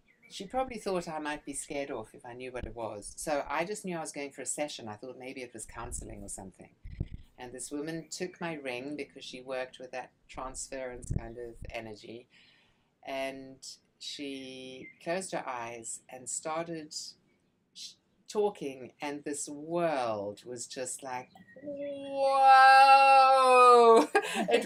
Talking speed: 155 wpm